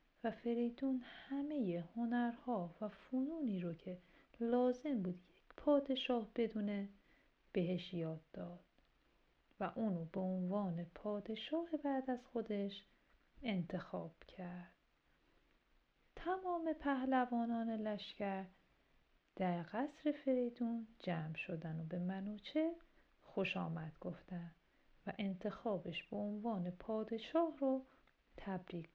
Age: 40-59